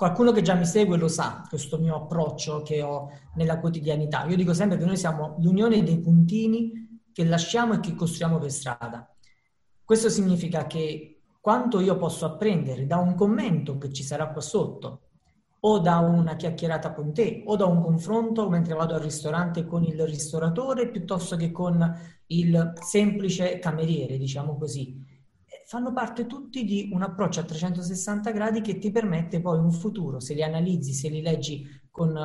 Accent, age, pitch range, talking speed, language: native, 40-59, 155-190 Hz, 170 wpm, Italian